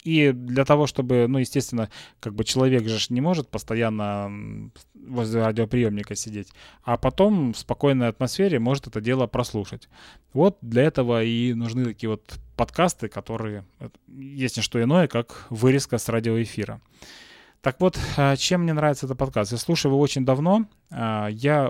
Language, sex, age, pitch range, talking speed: Russian, male, 20-39, 110-135 Hz, 150 wpm